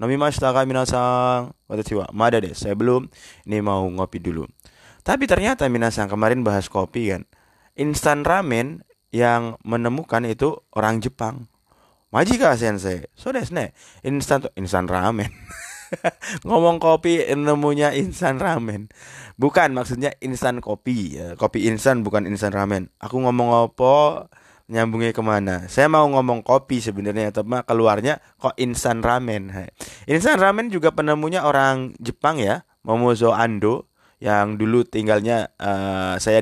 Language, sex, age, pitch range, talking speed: Indonesian, male, 20-39, 105-135 Hz, 130 wpm